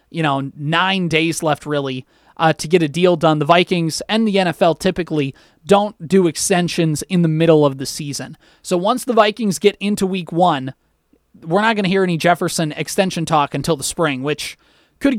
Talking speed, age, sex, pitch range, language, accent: 195 wpm, 20-39, male, 155-195 Hz, English, American